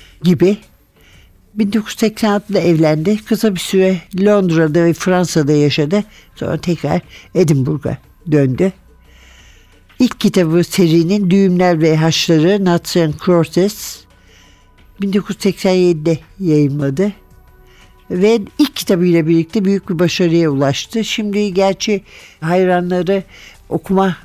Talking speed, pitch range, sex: 90 wpm, 160-195 Hz, male